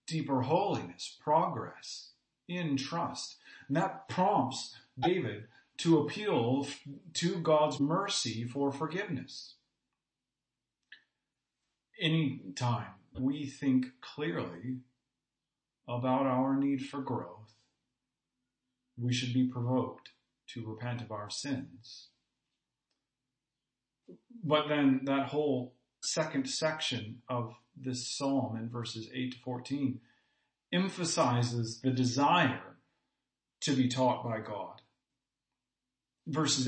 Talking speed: 95 wpm